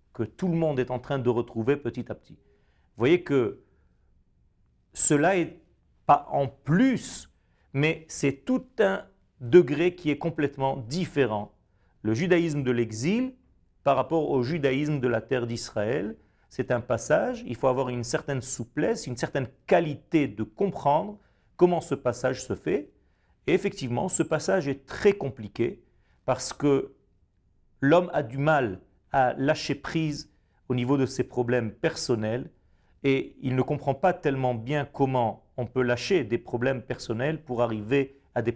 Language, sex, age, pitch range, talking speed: French, male, 40-59, 120-150 Hz, 155 wpm